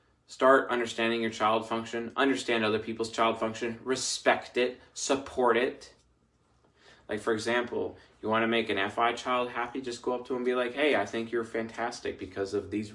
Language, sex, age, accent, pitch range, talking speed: English, male, 20-39, American, 95-125 Hz, 185 wpm